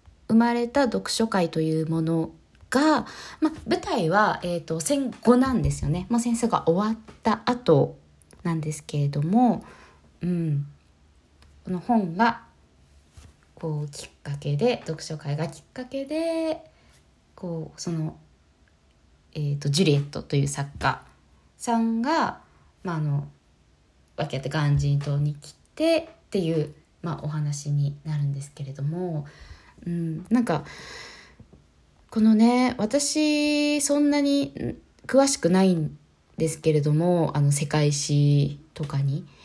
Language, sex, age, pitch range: Japanese, female, 20-39, 145-220 Hz